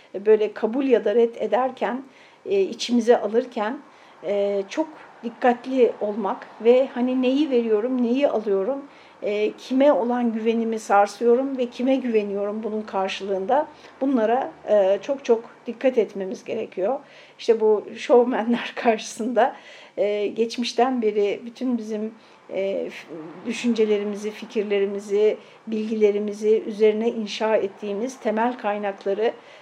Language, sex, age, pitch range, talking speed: Turkish, female, 60-79, 215-265 Hz, 95 wpm